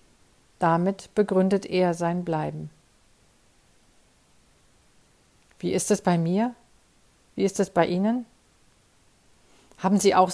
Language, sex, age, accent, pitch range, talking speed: German, female, 50-69, German, 175-205 Hz, 105 wpm